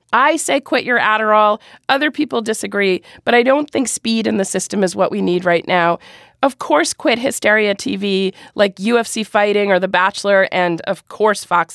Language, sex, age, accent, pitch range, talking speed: English, female, 40-59, American, 195-270 Hz, 190 wpm